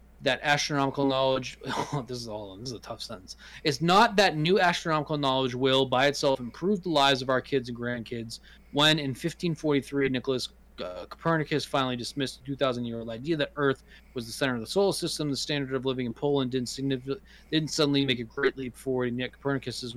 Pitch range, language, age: 125-145 Hz, English, 20-39